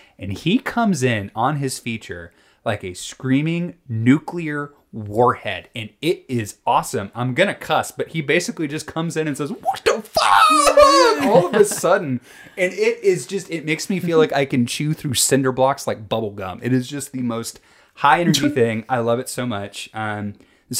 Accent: American